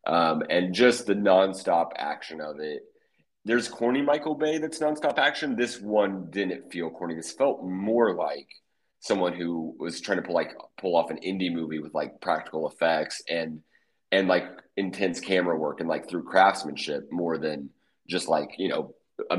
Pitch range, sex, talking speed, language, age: 80-105 Hz, male, 175 wpm, English, 30-49